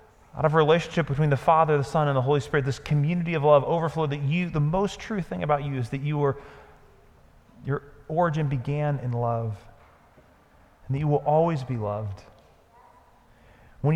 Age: 30-49